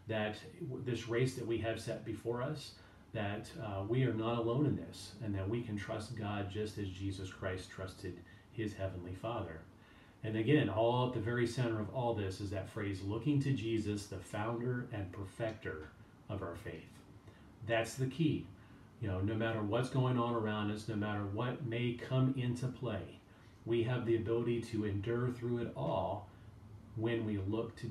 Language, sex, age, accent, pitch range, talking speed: English, male, 40-59, American, 100-120 Hz, 185 wpm